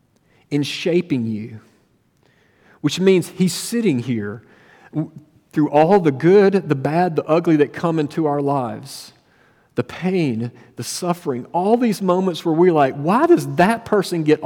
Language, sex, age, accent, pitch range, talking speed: English, male, 50-69, American, 135-175 Hz, 150 wpm